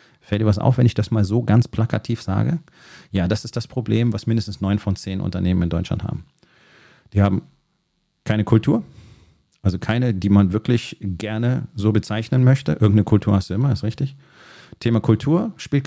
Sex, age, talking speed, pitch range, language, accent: male, 30-49, 185 wpm, 105-125 Hz, German, German